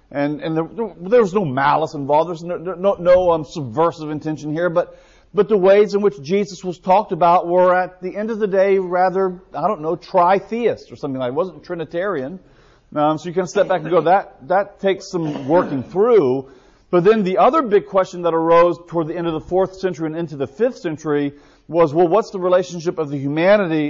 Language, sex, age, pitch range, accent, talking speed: English, male, 40-59, 155-195 Hz, American, 225 wpm